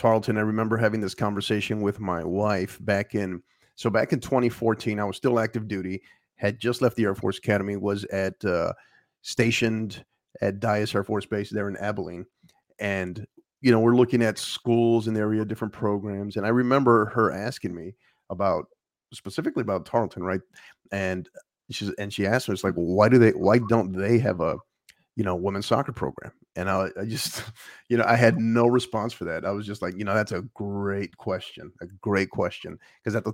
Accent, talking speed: American, 200 wpm